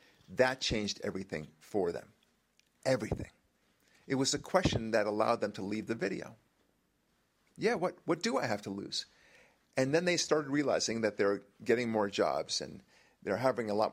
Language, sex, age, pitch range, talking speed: English, male, 50-69, 110-150 Hz, 170 wpm